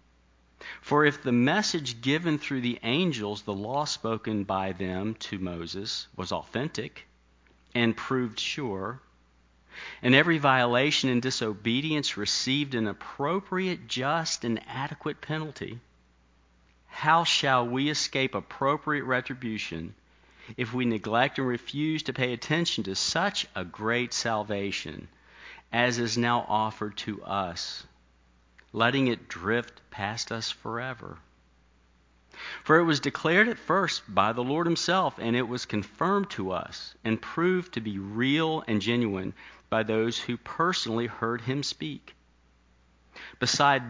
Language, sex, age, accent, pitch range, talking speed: English, male, 40-59, American, 95-135 Hz, 130 wpm